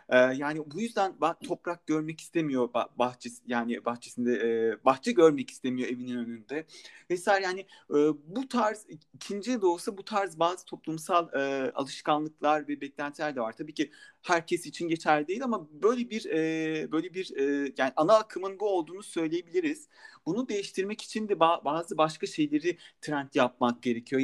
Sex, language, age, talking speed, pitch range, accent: male, Turkish, 40-59, 140 wpm, 140-180 Hz, native